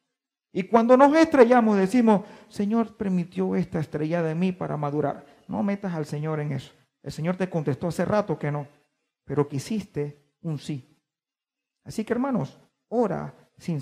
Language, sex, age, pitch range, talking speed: Spanish, male, 50-69, 150-215 Hz, 155 wpm